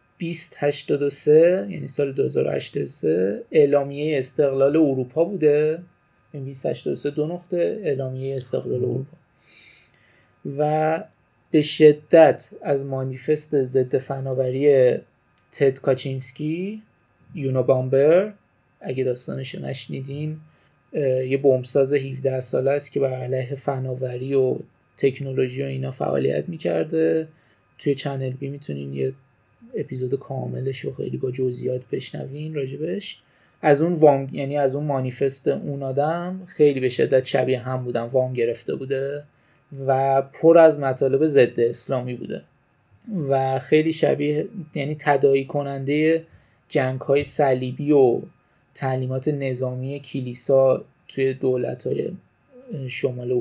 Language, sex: Persian, male